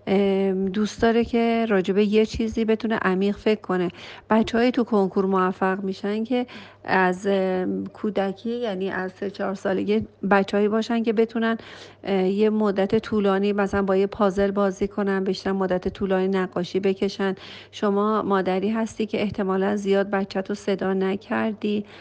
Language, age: Persian, 40-59